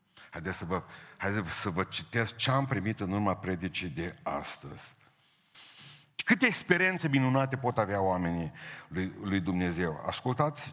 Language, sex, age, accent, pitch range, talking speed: Romanian, male, 50-69, native, 90-115 Hz, 140 wpm